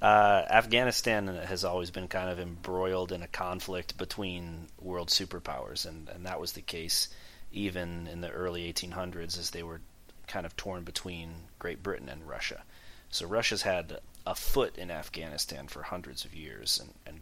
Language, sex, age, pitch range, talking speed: English, male, 30-49, 85-95 Hz, 170 wpm